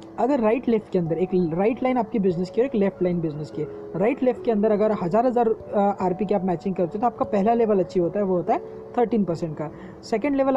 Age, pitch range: 20-39, 190-230 Hz